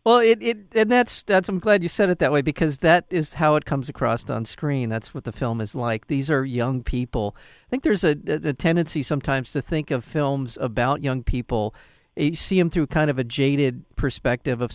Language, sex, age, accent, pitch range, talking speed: English, male, 40-59, American, 120-155 Hz, 230 wpm